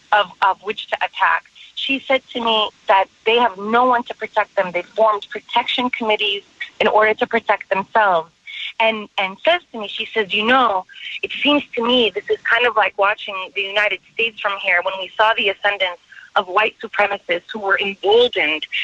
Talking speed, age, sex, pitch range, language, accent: 195 wpm, 30-49, female, 195-240 Hz, English, American